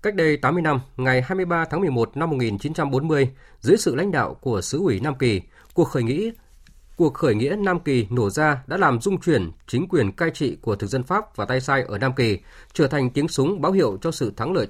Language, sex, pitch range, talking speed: Vietnamese, male, 120-160 Hz, 235 wpm